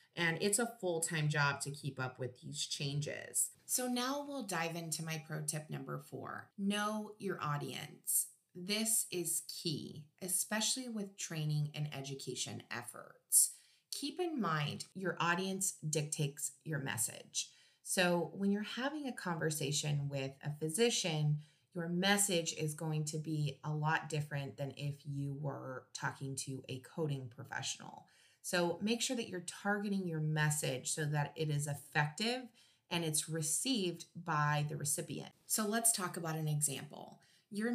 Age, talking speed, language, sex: 30-49, 150 wpm, English, female